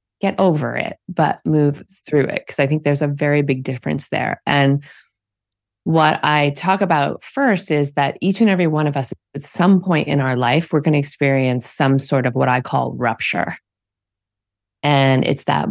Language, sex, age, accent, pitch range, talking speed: English, female, 30-49, American, 130-165 Hz, 190 wpm